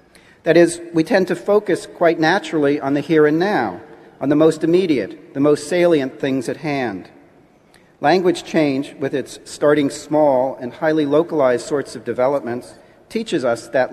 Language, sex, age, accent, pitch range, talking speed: English, male, 40-59, American, 125-160 Hz, 165 wpm